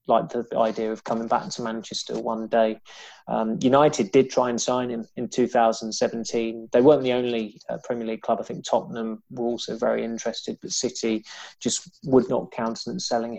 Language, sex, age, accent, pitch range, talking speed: English, male, 20-39, British, 110-120 Hz, 185 wpm